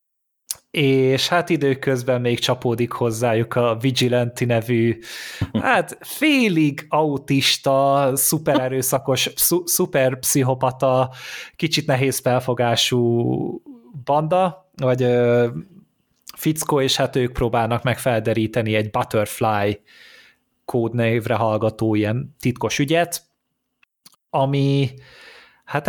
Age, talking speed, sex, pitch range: 20-39, 80 wpm, male, 115-140 Hz